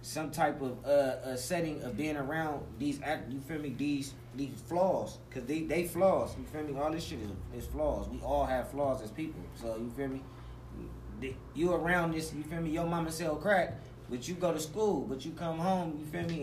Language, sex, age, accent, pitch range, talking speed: English, male, 20-39, American, 125-160 Hz, 230 wpm